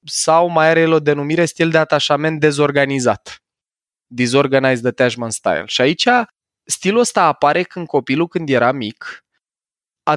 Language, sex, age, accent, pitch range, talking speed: Romanian, male, 20-39, native, 125-160 Hz, 135 wpm